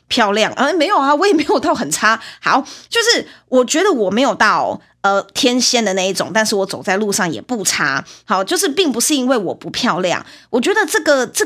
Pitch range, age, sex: 190-265 Hz, 20-39, female